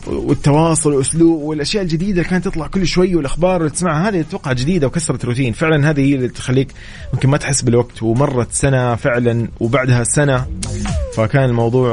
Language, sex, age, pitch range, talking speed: English, male, 30-49, 115-145 Hz, 155 wpm